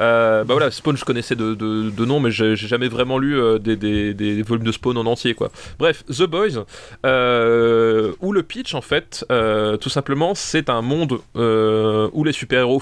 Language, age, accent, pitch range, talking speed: French, 20-39, French, 115-140 Hz, 210 wpm